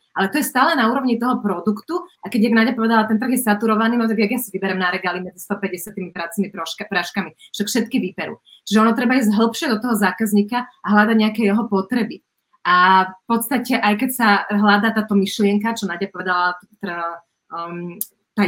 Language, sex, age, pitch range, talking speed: Slovak, female, 30-49, 195-240 Hz, 180 wpm